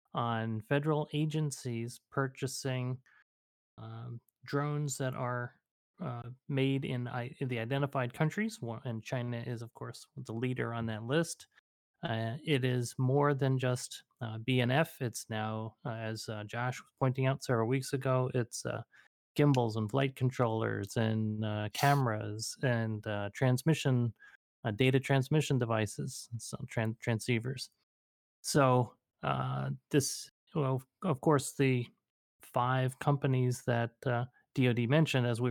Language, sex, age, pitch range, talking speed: English, male, 30-49, 115-135 Hz, 135 wpm